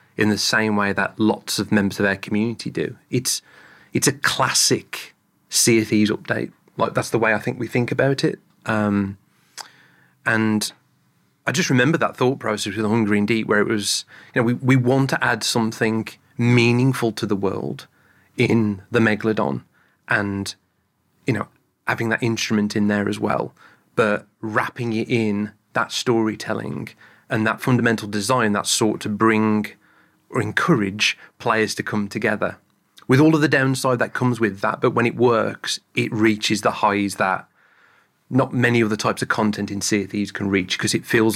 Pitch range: 105-120 Hz